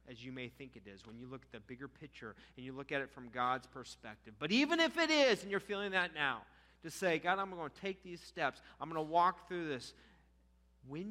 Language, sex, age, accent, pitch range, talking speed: English, male, 40-59, American, 115-185 Hz, 255 wpm